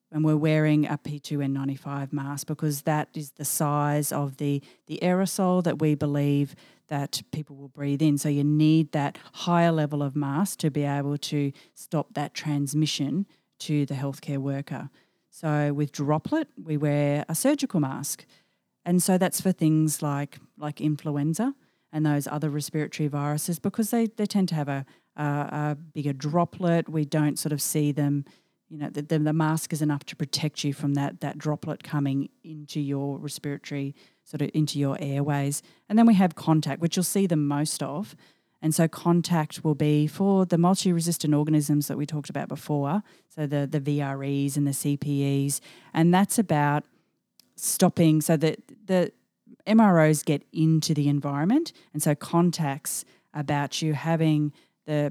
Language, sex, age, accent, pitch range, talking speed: English, female, 40-59, Australian, 145-165 Hz, 170 wpm